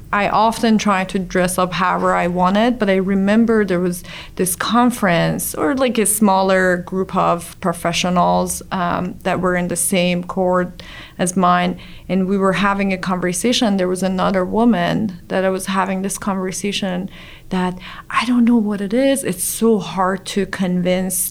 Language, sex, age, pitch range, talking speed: English, female, 30-49, 180-215 Hz, 170 wpm